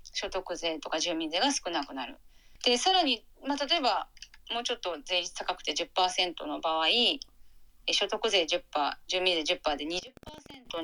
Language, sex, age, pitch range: Japanese, female, 30-49, 175-285 Hz